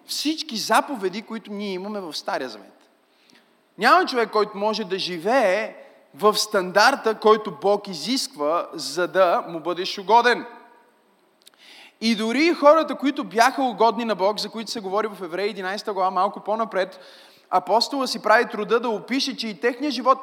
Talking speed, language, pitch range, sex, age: 155 wpm, Bulgarian, 190-235 Hz, male, 20-39